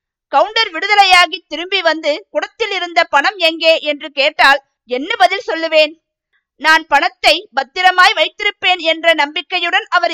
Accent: native